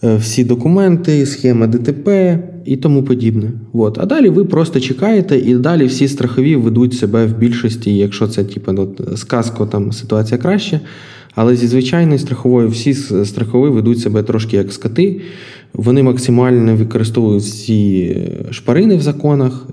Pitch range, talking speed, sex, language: 110-130 Hz, 135 wpm, male, Ukrainian